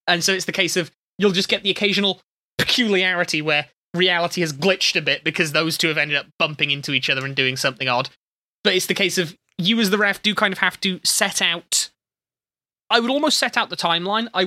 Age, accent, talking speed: 20-39, British, 230 wpm